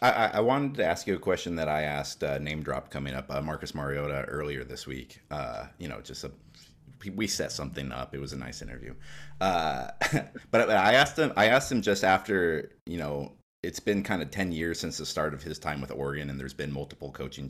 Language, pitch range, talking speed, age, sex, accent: English, 70-85 Hz, 230 wpm, 30-49, male, American